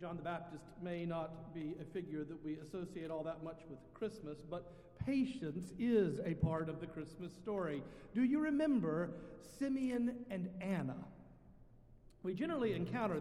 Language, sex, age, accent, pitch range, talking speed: English, male, 50-69, American, 150-195 Hz, 155 wpm